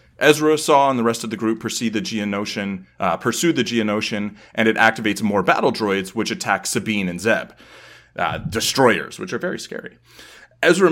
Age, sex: 30-49, male